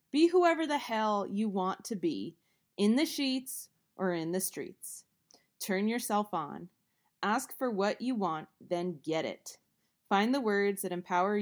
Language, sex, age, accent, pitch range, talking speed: English, female, 20-39, American, 185-230 Hz, 165 wpm